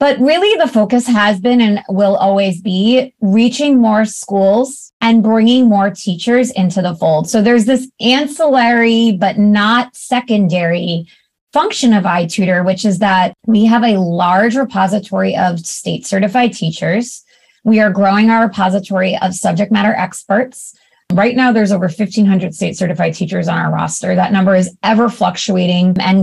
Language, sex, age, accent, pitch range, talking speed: English, female, 20-39, American, 190-235 Hz, 150 wpm